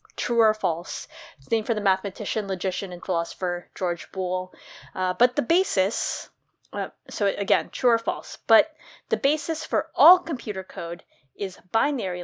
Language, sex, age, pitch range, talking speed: English, female, 20-39, 185-230 Hz, 150 wpm